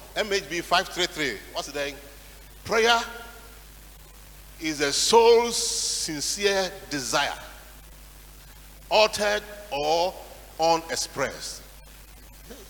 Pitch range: 160-235 Hz